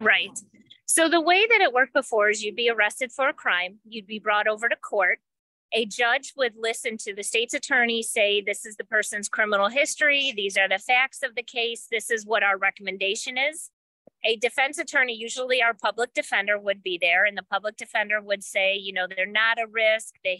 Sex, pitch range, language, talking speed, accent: female, 200-260 Hz, English, 210 wpm, American